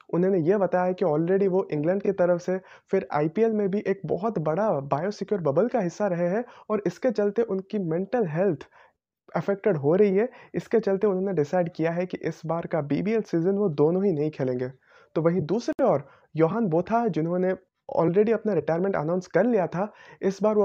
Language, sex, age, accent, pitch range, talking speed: Hindi, male, 30-49, native, 175-215 Hz, 200 wpm